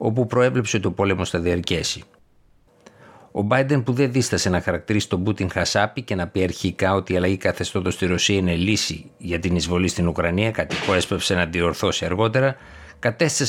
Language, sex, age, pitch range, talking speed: Greek, male, 60-79, 90-110 Hz, 175 wpm